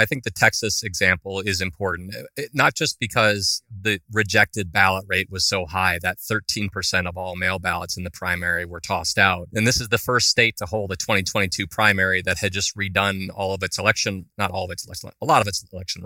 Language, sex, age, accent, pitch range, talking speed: English, male, 30-49, American, 95-110 Hz, 215 wpm